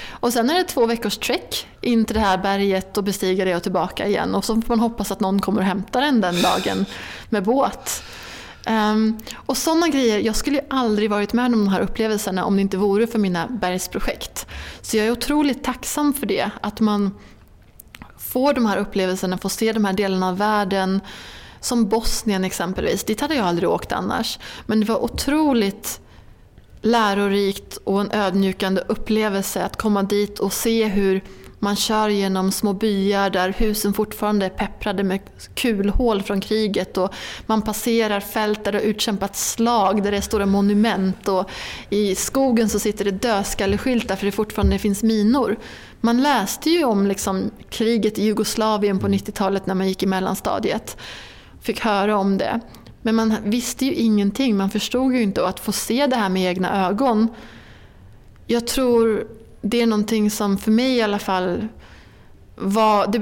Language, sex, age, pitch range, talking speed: English, female, 20-39, 195-225 Hz, 180 wpm